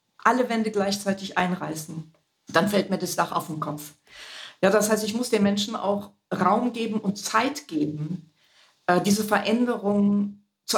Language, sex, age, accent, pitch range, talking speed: German, female, 50-69, German, 185-215 Hz, 155 wpm